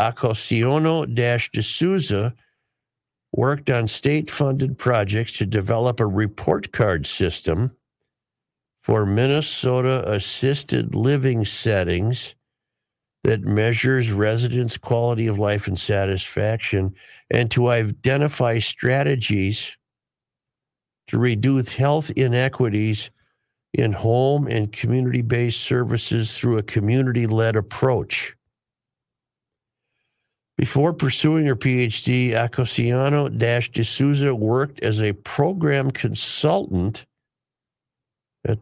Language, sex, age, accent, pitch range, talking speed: English, male, 50-69, American, 110-130 Hz, 80 wpm